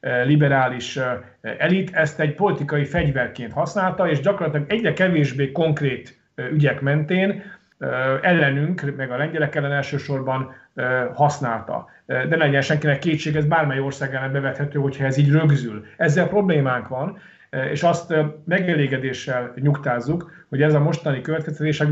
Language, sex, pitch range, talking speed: Hungarian, male, 135-160 Hz, 125 wpm